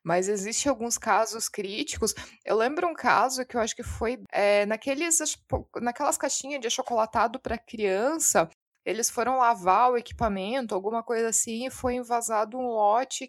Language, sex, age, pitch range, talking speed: Portuguese, female, 20-39, 205-255 Hz, 150 wpm